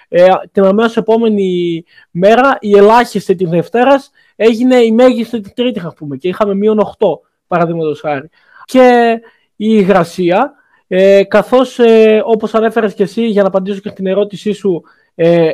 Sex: male